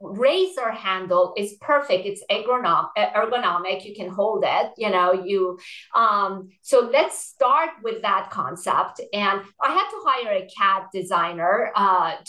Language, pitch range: English, 200-275 Hz